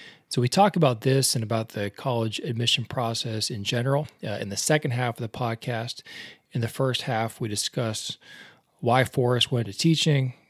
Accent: American